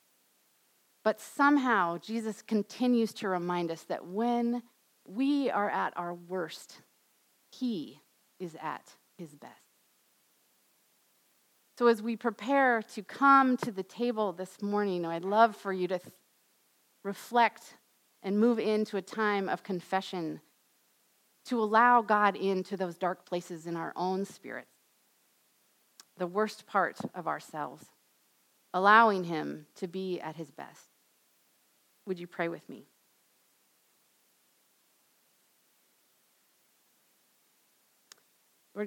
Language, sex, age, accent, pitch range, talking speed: English, female, 40-59, American, 175-215 Hz, 110 wpm